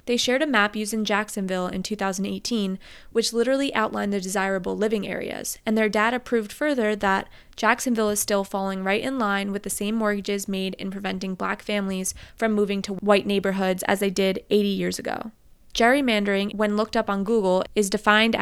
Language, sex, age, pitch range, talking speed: English, female, 20-39, 200-235 Hz, 185 wpm